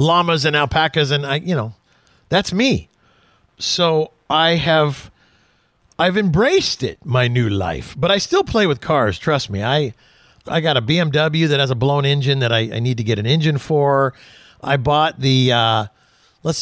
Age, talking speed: 50-69, 180 wpm